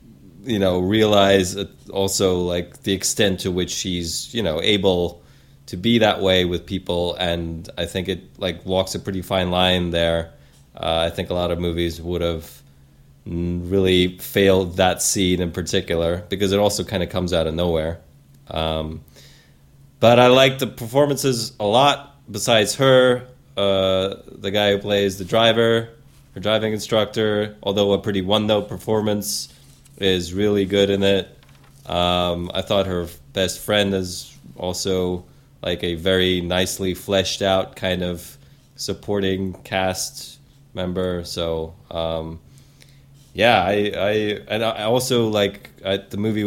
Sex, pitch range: male, 85-105 Hz